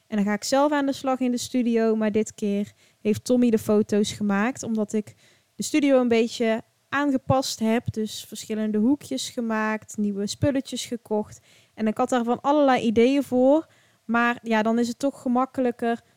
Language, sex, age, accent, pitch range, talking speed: Dutch, female, 20-39, Dutch, 215-255 Hz, 180 wpm